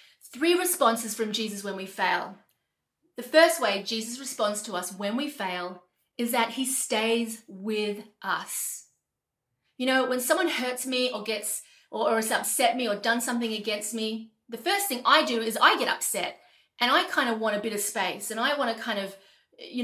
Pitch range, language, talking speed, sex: 210-255 Hz, English, 200 wpm, female